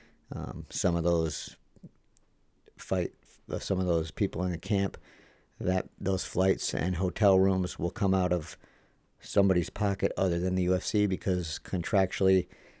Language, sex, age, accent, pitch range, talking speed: English, male, 50-69, American, 85-100 Hz, 140 wpm